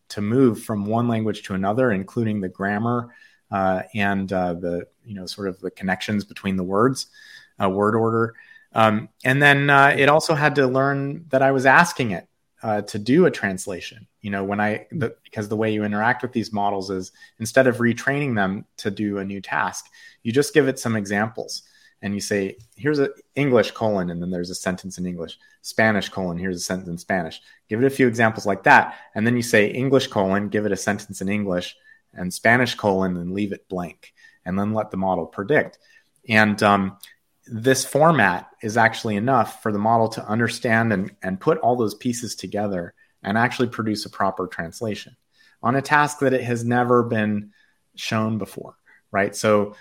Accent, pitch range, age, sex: American, 100-125 Hz, 30-49, male